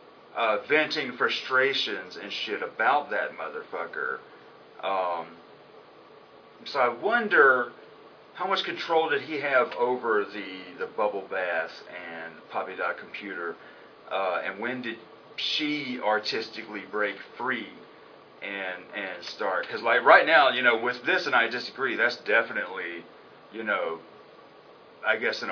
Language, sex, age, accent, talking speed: English, male, 40-59, American, 130 wpm